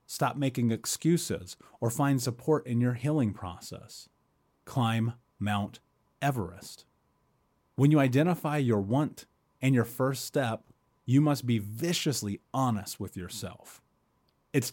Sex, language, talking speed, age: male, English, 120 wpm, 30-49